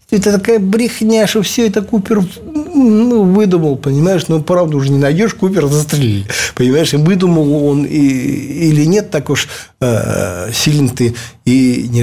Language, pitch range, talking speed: Russian, 125-180 Hz, 155 wpm